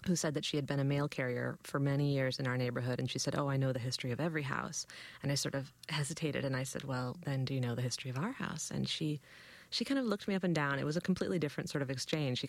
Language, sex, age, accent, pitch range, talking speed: English, female, 30-49, American, 130-155 Hz, 305 wpm